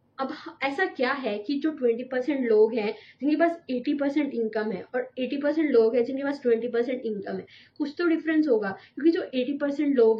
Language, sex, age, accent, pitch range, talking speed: Hindi, female, 20-39, native, 225-285 Hz, 180 wpm